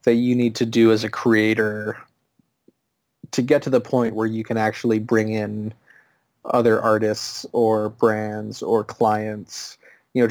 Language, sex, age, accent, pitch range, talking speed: English, male, 20-39, American, 105-115 Hz, 155 wpm